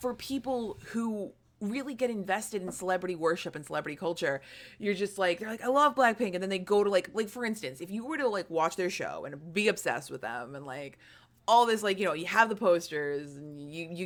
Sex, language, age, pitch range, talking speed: female, English, 20-39, 170-225 Hz, 235 wpm